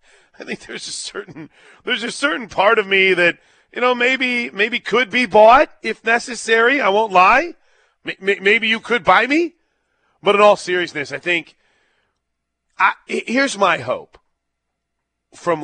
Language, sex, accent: English, male, American